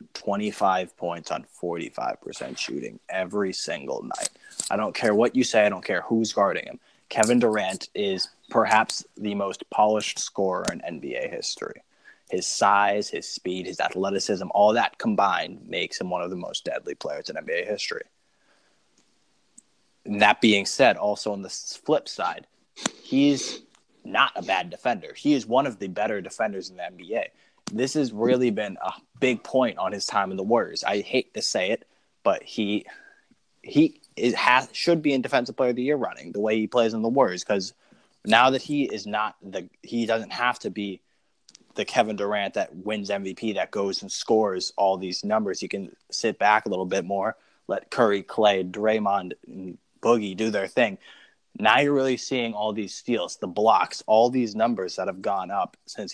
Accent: American